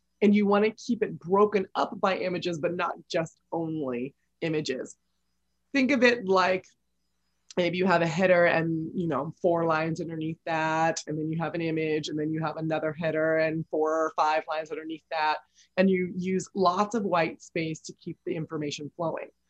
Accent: American